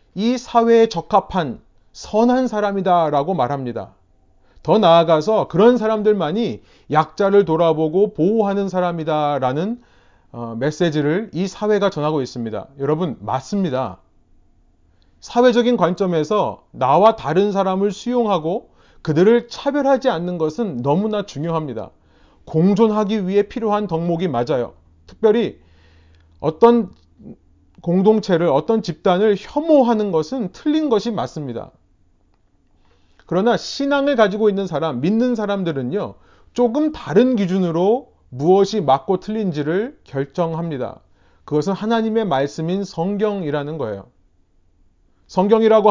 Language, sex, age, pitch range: Korean, male, 30-49, 140-220 Hz